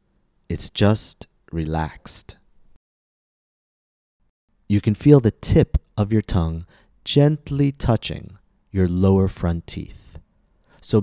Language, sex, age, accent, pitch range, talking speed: English, male, 30-49, American, 85-105 Hz, 100 wpm